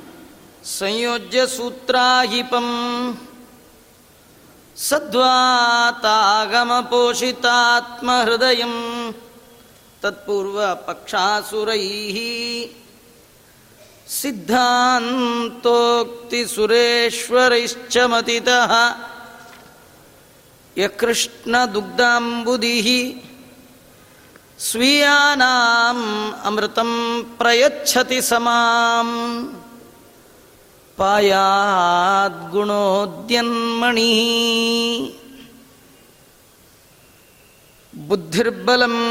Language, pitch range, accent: Kannada, 230-245 Hz, native